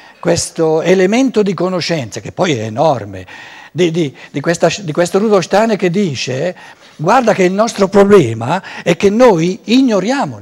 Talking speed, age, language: 140 wpm, 60-79, Italian